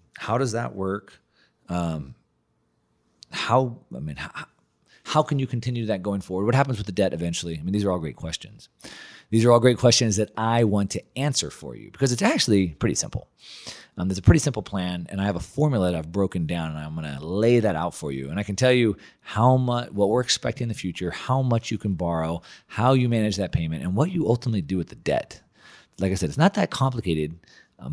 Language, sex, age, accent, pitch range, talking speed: English, male, 30-49, American, 90-120 Hz, 230 wpm